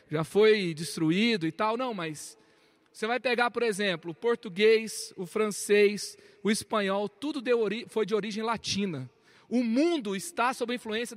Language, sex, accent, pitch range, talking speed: Portuguese, male, Brazilian, 185-250 Hz, 155 wpm